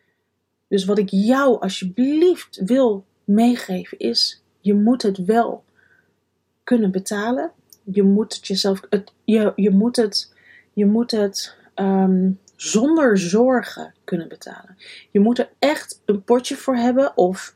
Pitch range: 190-250 Hz